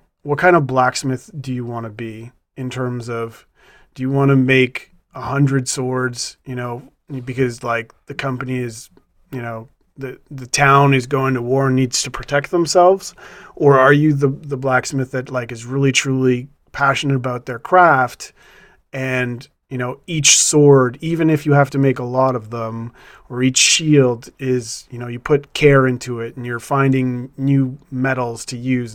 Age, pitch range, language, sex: 30-49, 125-145 Hz, English, male